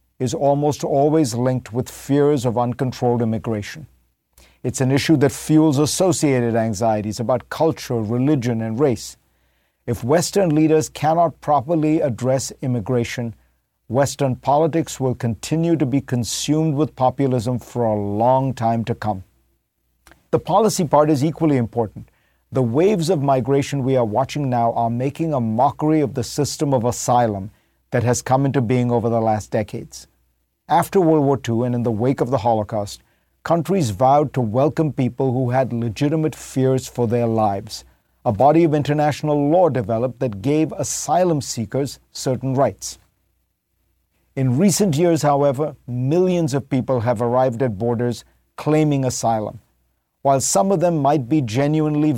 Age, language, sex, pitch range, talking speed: 50-69, English, male, 115-150 Hz, 150 wpm